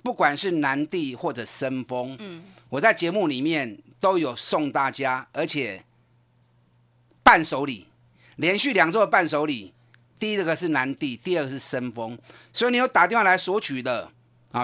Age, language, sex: 30-49, Chinese, male